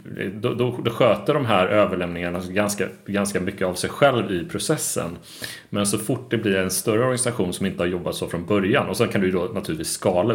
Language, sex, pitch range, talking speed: Swedish, male, 90-110 Hz, 220 wpm